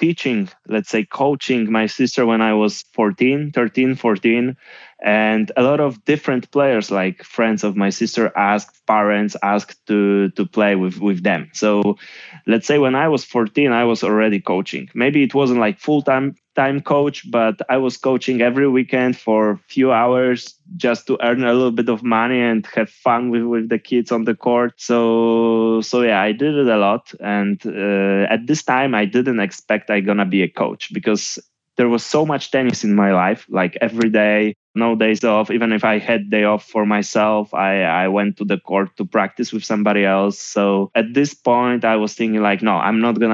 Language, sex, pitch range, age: English, male, 105-130 Hz, 20-39